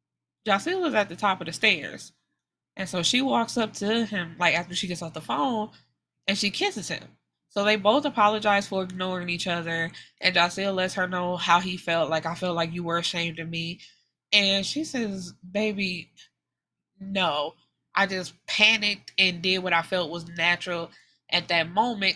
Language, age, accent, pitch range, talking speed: English, 20-39, American, 170-205 Hz, 185 wpm